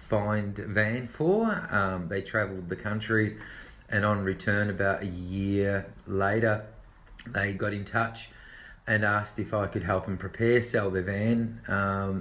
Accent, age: Australian, 30-49